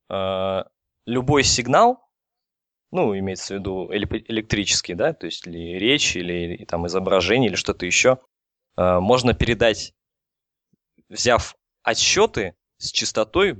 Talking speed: 95 wpm